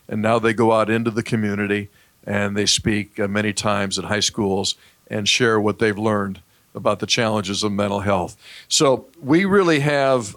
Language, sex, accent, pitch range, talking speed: English, male, American, 105-125 Hz, 180 wpm